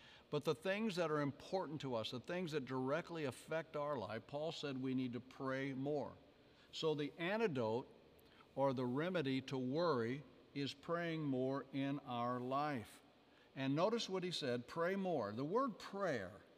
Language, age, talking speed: English, 60-79, 165 wpm